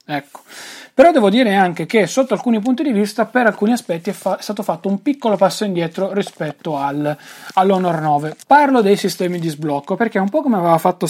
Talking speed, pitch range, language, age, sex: 205 wpm, 165-215 Hz, Italian, 30-49, male